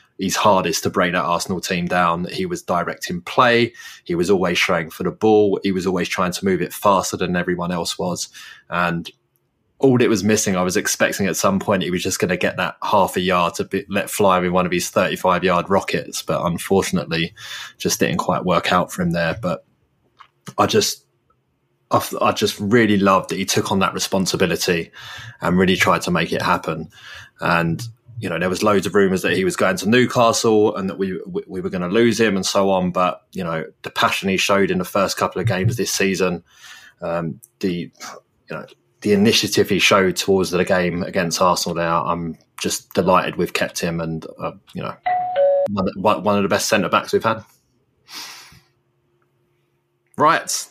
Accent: British